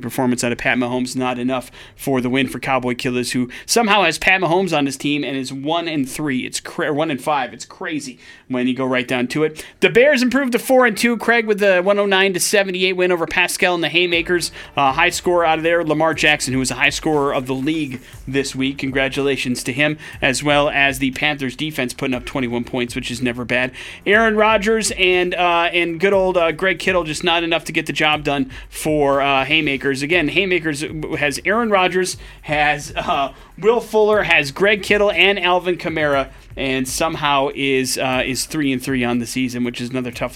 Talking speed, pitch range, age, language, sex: 205 wpm, 135-185 Hz, 30-49, English, male